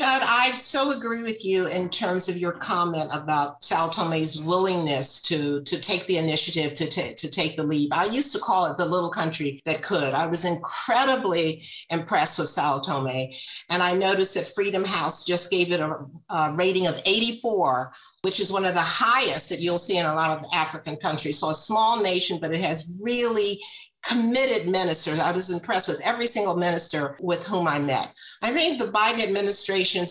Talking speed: 195 wpm